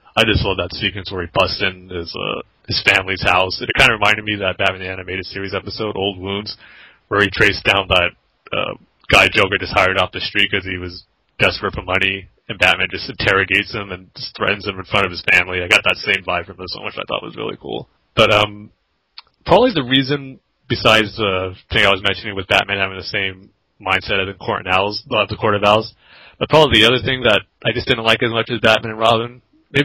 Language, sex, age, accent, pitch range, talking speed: English, male, 30-49, American, 95-110 Hz, 240 wpm